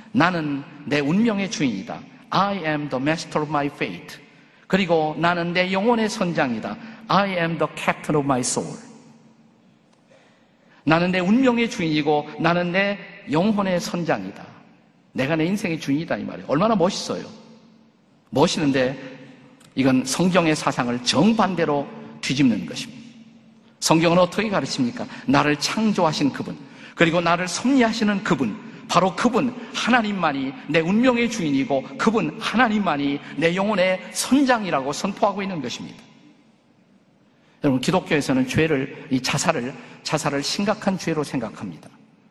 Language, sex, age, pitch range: Korean, male, 50-69, 150-225 Hz